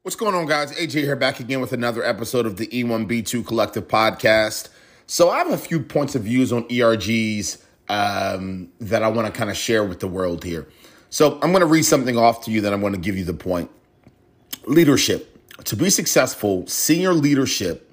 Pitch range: 110-150 Hz